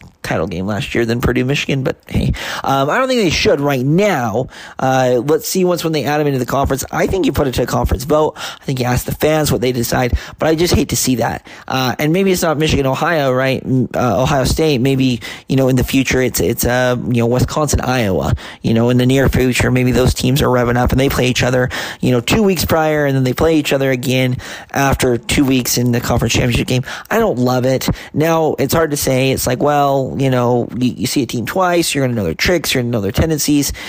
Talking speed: 260 wpm